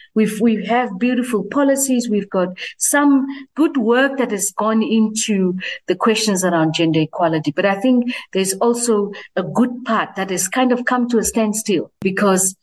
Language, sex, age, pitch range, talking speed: English, female, 50-69, 190-245 Hz, 165 wpm